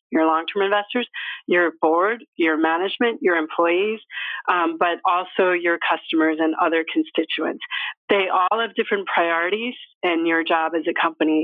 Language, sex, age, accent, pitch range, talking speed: English, female, 40-59, American, 165-220 Hz, 145 wpm